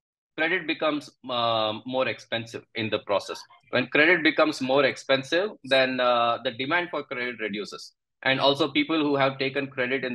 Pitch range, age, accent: 120-140 Hz, 20-39, Indian